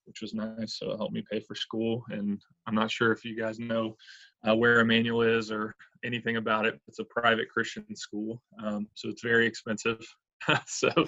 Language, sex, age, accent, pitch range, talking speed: English, male, 20-39, American, 105-115 Hz, 205 wpm